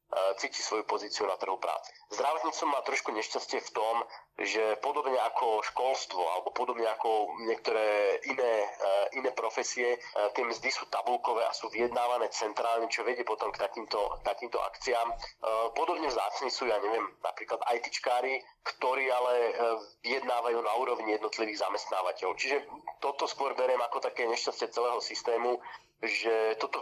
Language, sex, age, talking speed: Slovak, male, 40-59, 145 wpm